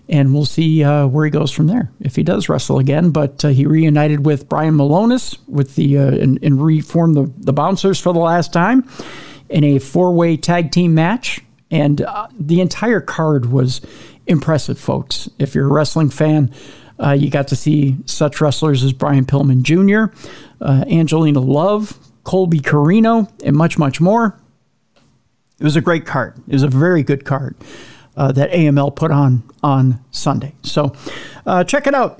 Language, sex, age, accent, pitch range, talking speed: English, male, 50-69, American, 135-165 Hz, 180 wpm